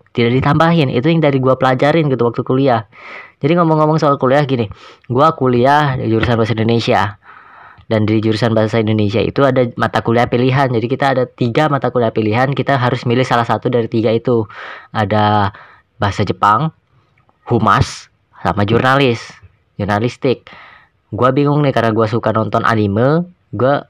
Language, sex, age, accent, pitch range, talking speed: Indonesian, female, 20-39, native, 110-140 Hz, 155 wpm